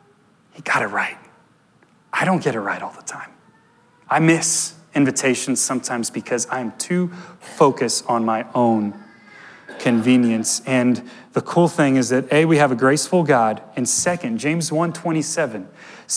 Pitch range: 130-175 Hz